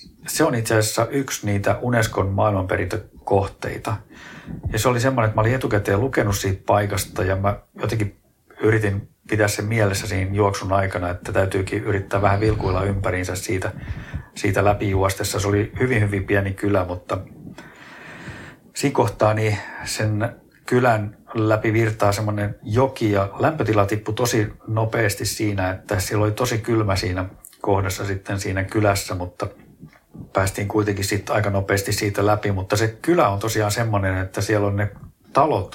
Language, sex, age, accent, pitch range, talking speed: Finnish, male, 50-69, native, 100-110 Hz, 145 wpm